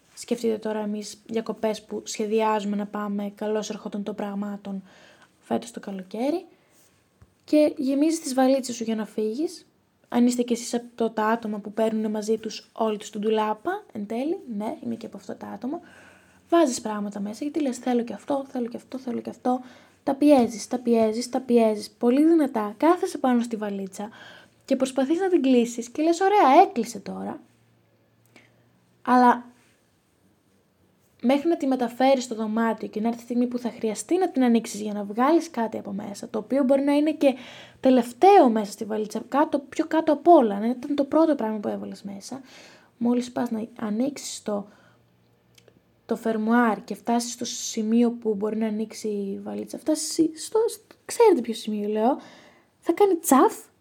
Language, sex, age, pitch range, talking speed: Greek, female, 20-39, 215-280 Hz, 175 wpm